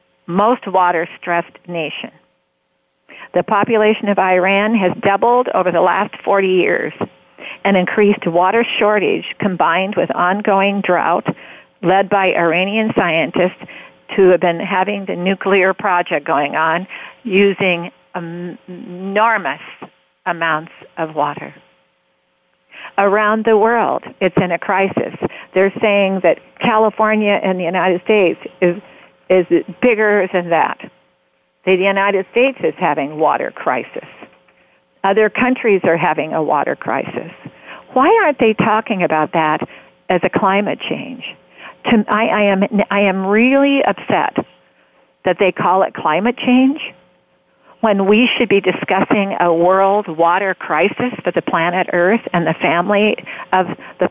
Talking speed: 125 wpm